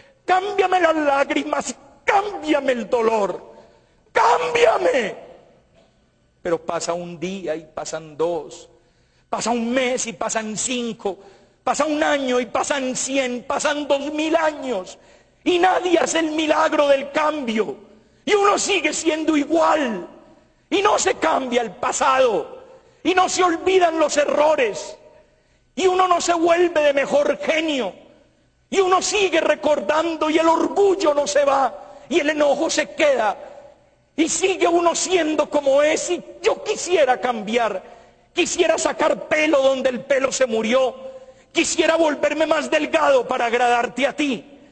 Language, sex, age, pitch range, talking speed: Spanish, male, 50-69, 260-320 Hz, 140 wpm